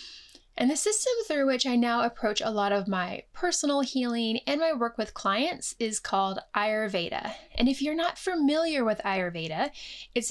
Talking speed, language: 175 wpm, English